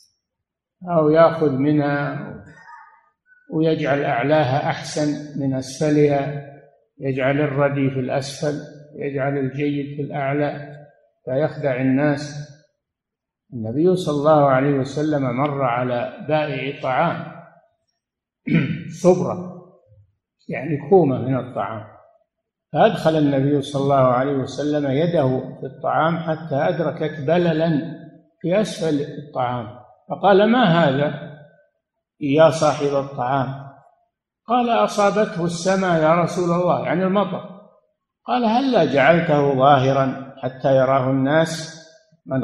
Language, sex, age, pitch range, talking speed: Arabic, male, 50-69, 135-170 Hz, 100 wpm